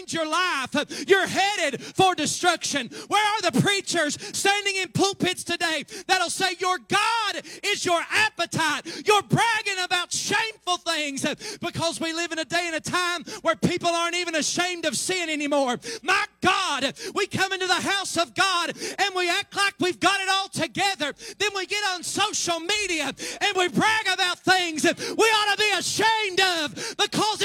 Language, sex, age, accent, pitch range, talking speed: English, male, 30-49, American, 240-385 Hz, 175 wpm